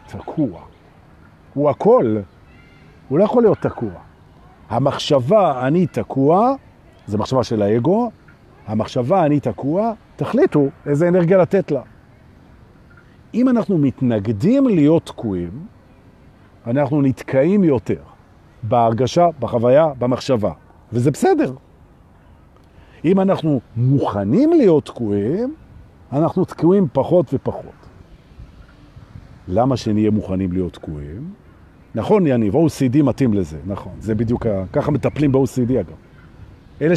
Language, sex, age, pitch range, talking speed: Hebrew, male, 50-69, 115-185 Hz, 105 wpm